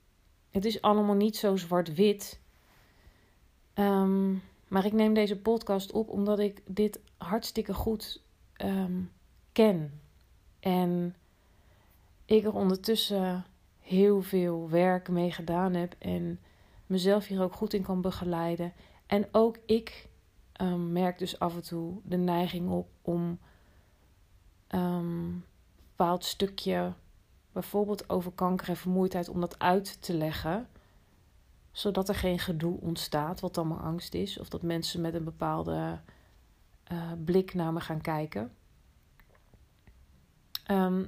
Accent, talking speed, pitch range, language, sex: Dutch, 125 wpm, 155-195 Hz, Dutch, female